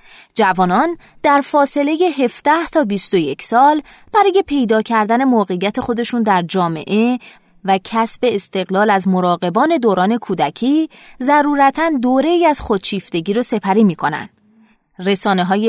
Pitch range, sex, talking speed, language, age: 195-265 Hz, female, 115 wpm, Persian, 20-39